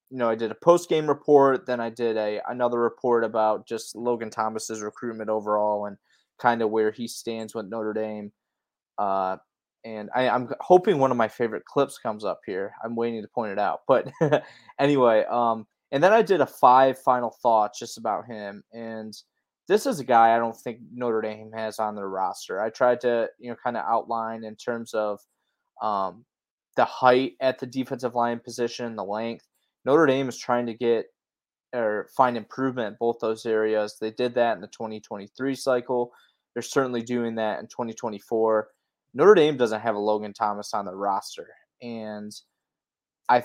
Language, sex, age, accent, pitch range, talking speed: English, male, 20-39, American, 110-125 Hz, 185 wpm